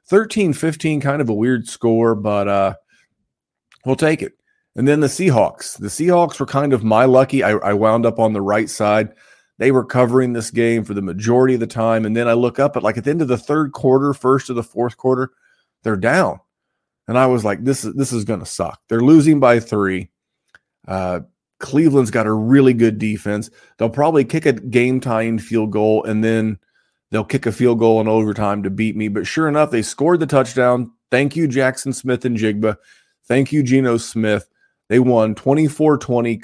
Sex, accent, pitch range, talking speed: male, American, 110-140 Hz, 200 wpm